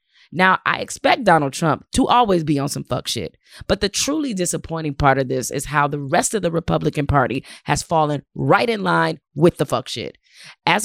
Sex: female